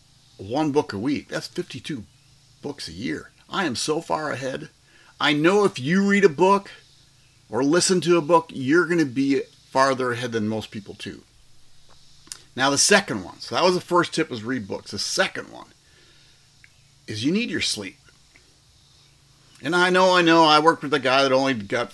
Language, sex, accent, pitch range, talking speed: English, male, American, 125-175 Hz, 190 wpm